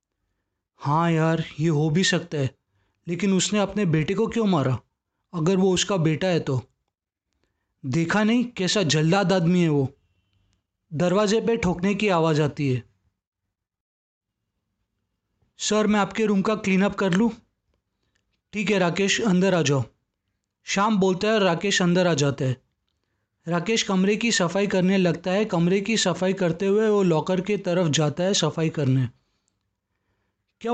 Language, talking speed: Hindi, 155 wpm